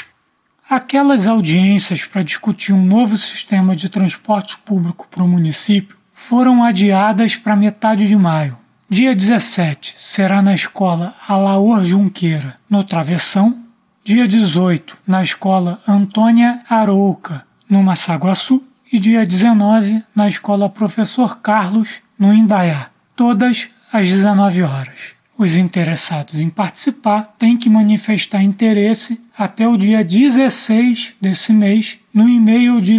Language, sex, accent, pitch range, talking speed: Portuguese, male, Brazilian, 185-220 Hz, 120 wpm